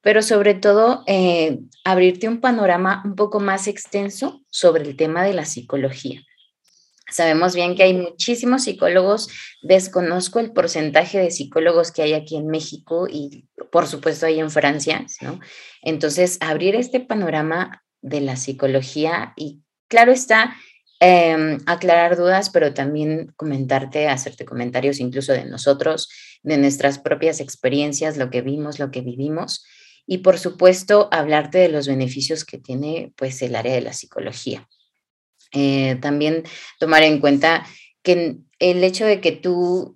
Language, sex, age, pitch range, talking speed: Spanish, female, 20-39, 140-185 Hz, 145 wpm